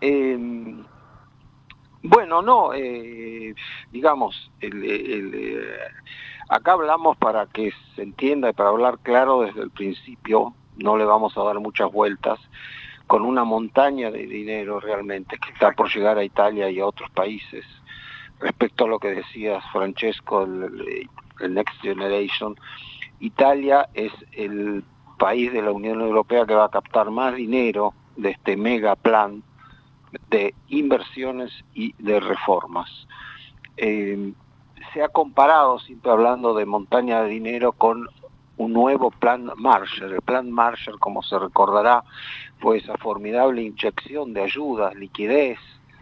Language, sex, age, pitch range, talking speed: Spanish, male, 50-69, 105-130 Hz, 135 wpm